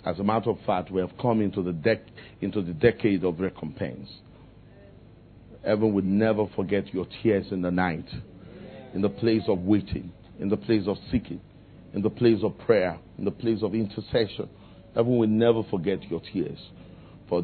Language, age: English, 50-69